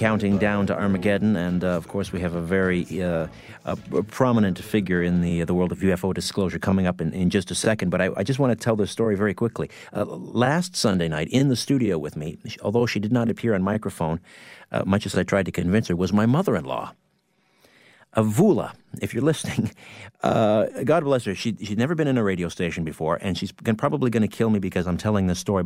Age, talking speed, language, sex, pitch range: 50-69, 230 wpm, English, male, 90-115 Hz